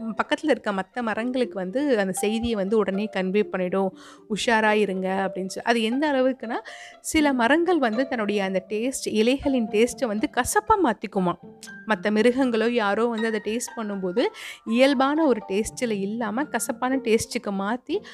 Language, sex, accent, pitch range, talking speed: Tamil, female, native, 195-255 Hz, 140 wpm